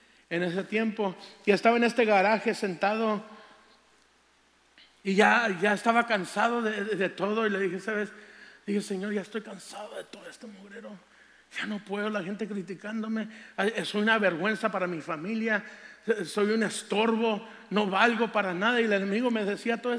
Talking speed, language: 175 wpm, Spanish